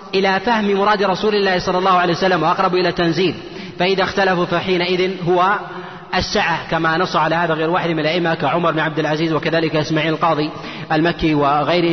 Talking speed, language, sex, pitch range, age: 170 wpm, Arabic, male, 175-195 Hz, 30-49